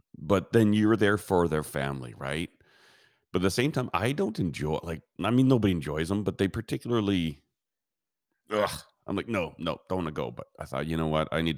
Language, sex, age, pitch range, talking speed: English, male, 30-49, 75-100 Hz, 225 wpm